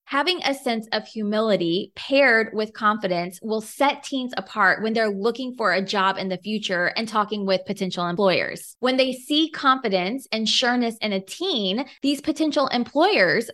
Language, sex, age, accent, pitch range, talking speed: English, female, 20-39, American, 200-265 Hz, 170 wpm